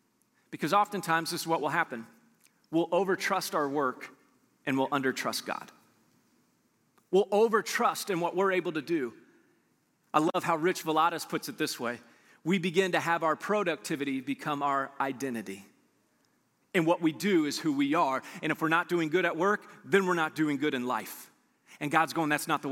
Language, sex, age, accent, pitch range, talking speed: English, male, 40-59, American, 135-180 Hz, 185 wpm